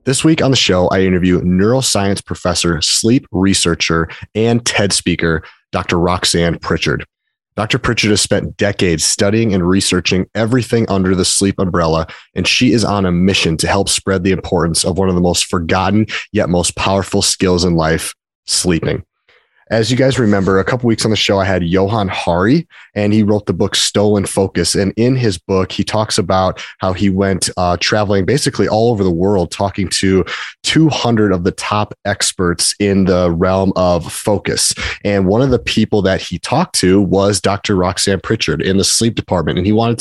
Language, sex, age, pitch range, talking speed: English, male, 30-49, 90-105 Hz, 185 wpm